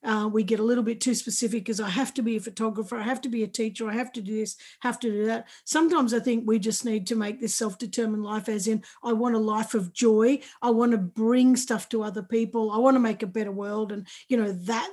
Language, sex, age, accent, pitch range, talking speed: English, female, 50-69, Australian, 225-265 Hz, 275 wpm